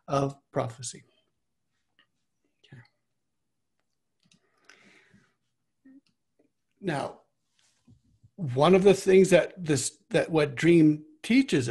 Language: English